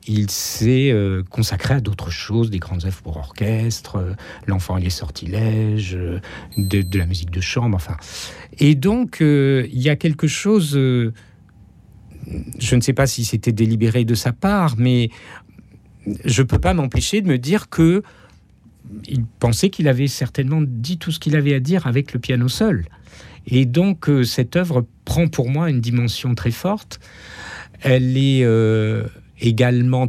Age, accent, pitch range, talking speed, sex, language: 50-69, French, 105-140 Hz, 170 wpm, male, French